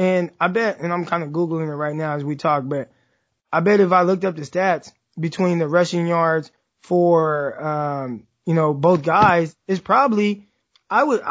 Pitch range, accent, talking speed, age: 155-190 Hz, American, 195 wpm, 20-39